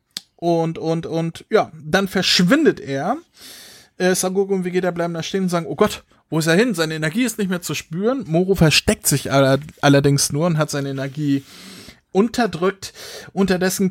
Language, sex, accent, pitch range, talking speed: German, male, German, 155-195 Hz, 180 wpm